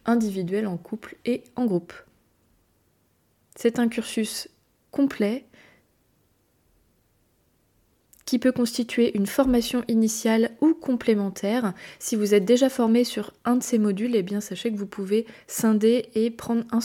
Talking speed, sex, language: 135 wpm, female, French